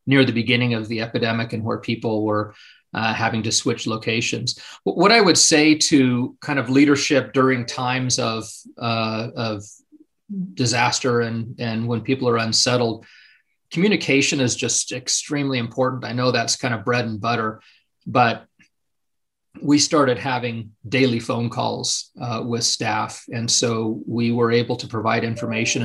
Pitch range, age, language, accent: 115-130 Hz, 40-59, English, American